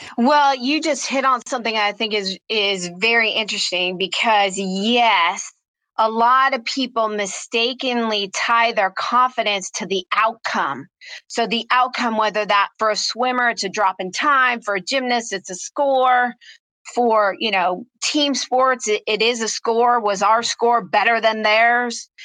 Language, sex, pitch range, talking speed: English, female, 210-250 Hz, 160 wpm